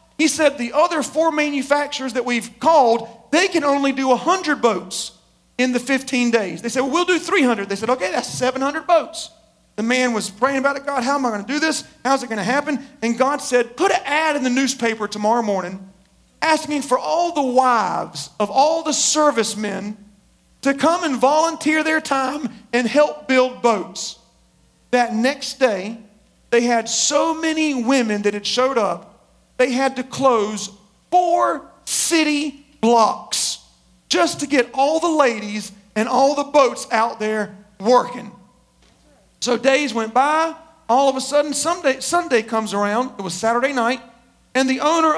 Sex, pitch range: male, 230-295 Hz